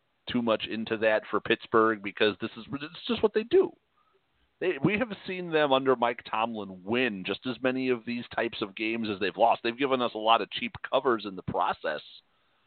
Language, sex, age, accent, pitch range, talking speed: English, male, 40-59, American, 100-125 Hz, 215 wpm